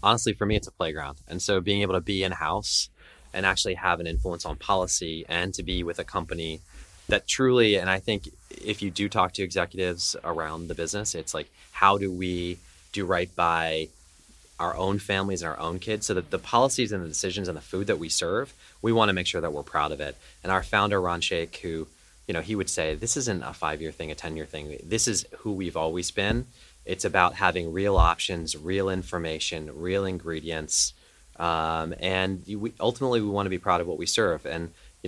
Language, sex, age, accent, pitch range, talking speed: English, male, 30-49, American, 80-105 Hz, 215 wpm